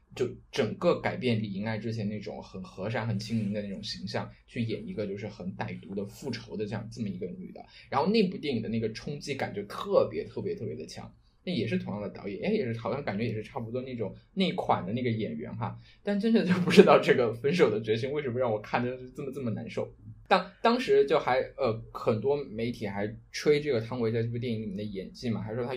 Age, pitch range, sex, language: 20-39, 105-120 Hz, male, Chinese